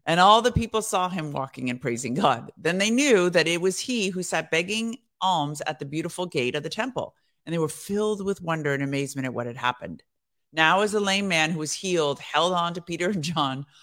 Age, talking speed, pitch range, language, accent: 50-69, 235 wpm, 140-180 Hz, English, American